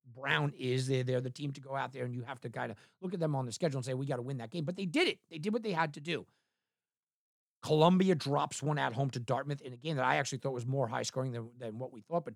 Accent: American